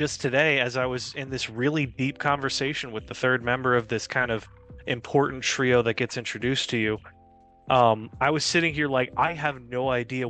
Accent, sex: American, male